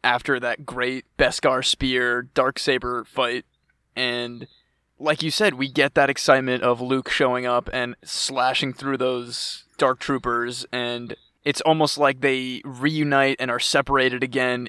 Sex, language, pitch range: male, English, 125-140 Hz